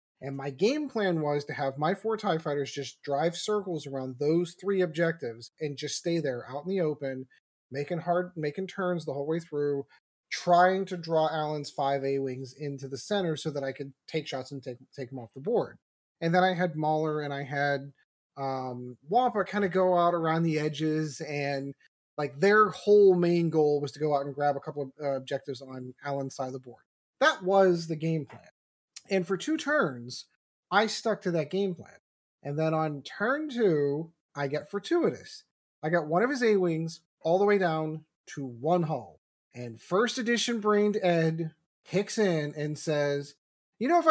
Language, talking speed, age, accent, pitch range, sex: English, 195 wpm, 30-49, American, 145-190 Hz, male